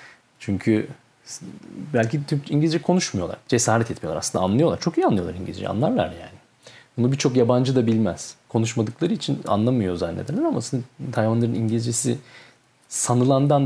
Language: Turkish